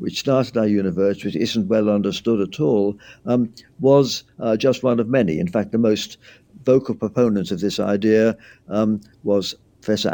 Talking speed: 170 wpm